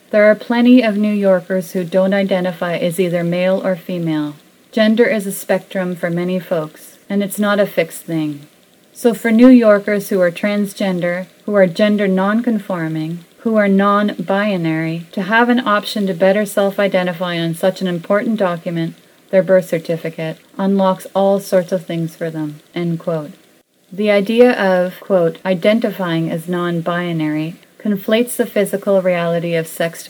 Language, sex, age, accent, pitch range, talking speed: English, female, 30-49, American, 175-205 Hz, 160 wpm